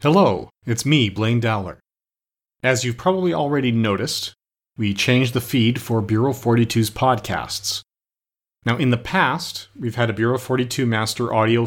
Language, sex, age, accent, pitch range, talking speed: English, male, 30-49, American, 100-125 Hz, 150 wpm